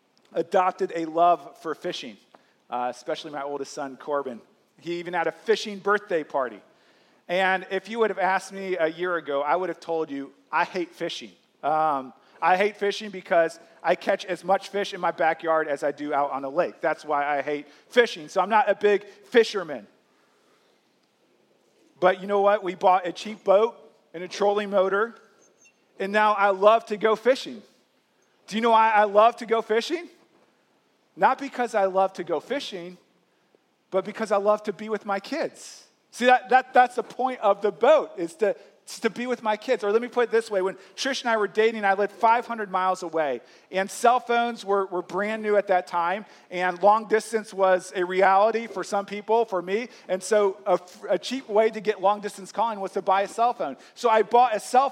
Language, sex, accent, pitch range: English, male, American, 180-220 Hz